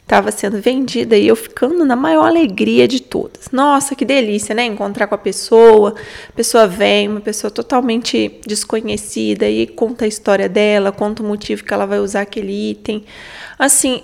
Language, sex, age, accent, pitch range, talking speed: Portuguese, female, 20-39, Brazilian, 210-260 Hz, 175 wpm